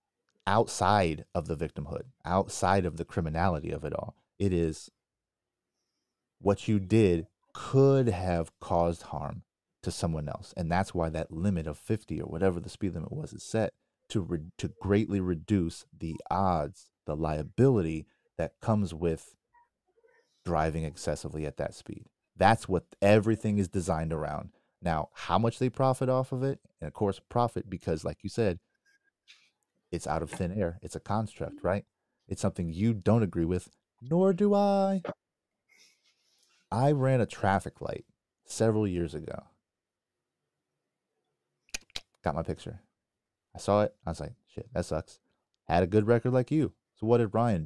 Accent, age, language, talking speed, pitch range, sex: American, 30-49, English, 155 wpm, 85-120 Hz, male